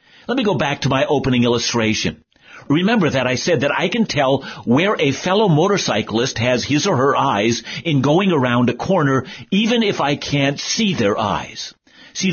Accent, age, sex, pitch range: American, 50-69, male, 125-190 Hz